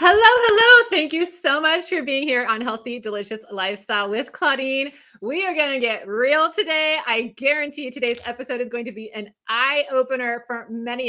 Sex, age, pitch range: female, 30-49, 225-300 Hz